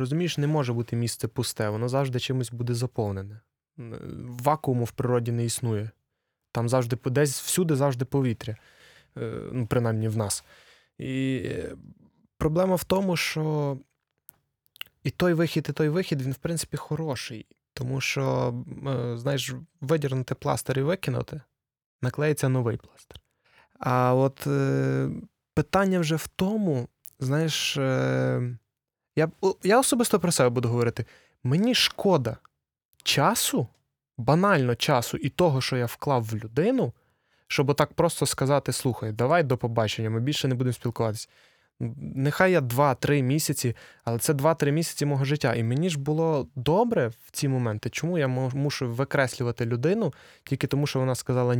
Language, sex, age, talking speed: Ukrainian, male, 20-39, 135 wpm